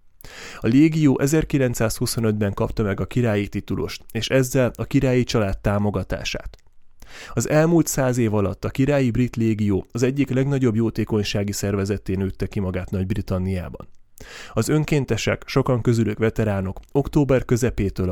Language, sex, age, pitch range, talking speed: Hungarian, male, 30-49, 100-125 Hz, 130 wpm